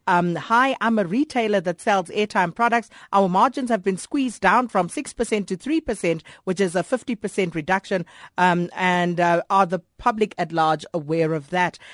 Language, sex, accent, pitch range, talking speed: English, female, South African, 175-225 Hz, 175 wpm